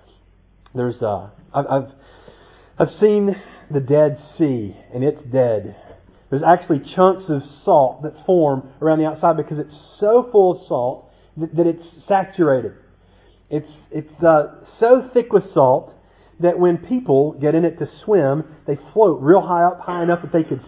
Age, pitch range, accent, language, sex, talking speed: 40-59, 125-170 Hz, American, English, male, 160 wpm